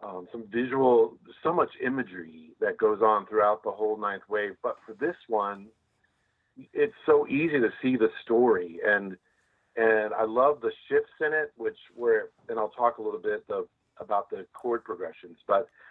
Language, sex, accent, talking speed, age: English, male, American, 175 wpm, 40-59